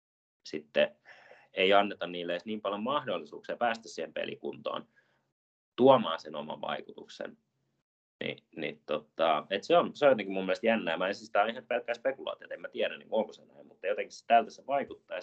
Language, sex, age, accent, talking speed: Finnish, male, 30-49, native, 190 wpm